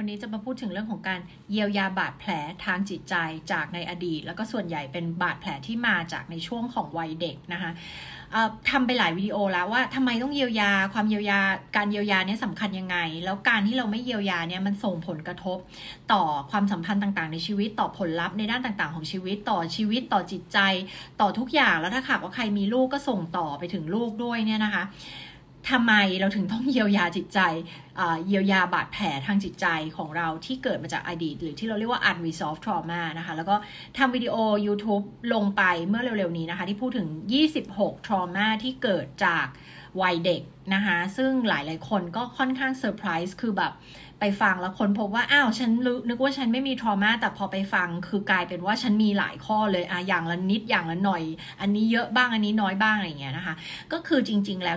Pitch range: 175-220 Hz